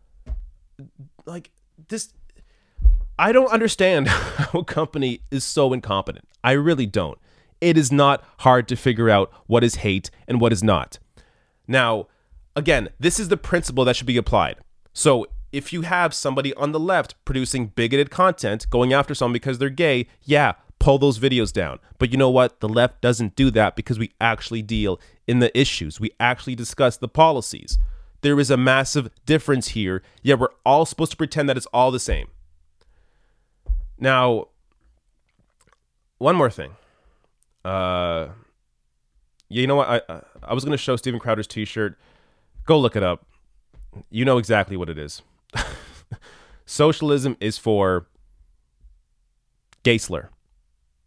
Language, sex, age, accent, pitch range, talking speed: English, male, 30-49, American, 90-140 Hz, 150 wpm